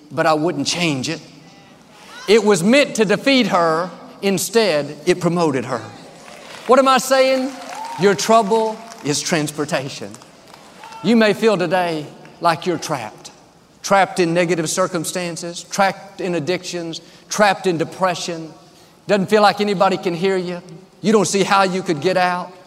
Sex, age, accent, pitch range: male, 50-69, American, 165-225 Hz